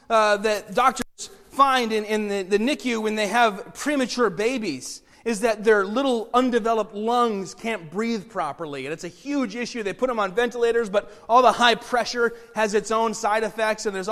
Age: 30-49